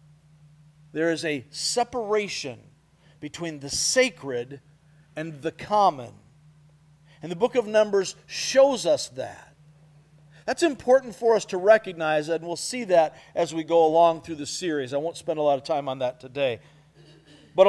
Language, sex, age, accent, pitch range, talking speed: English, male, 50-69, American, 150-200 Hz, 155 wpm